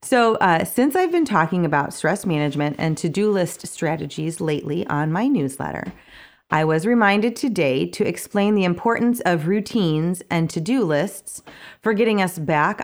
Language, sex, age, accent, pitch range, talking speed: English, female, 30-49, American, 165-225 Hz, 160 wpm